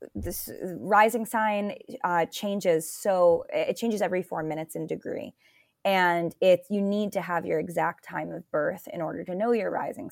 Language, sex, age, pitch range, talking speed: English, female, 20-39, 165-200 Hz, 180 wpm